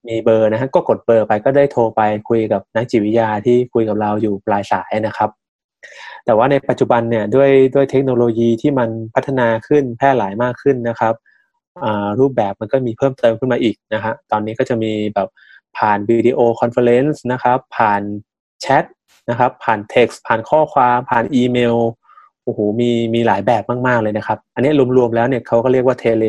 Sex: male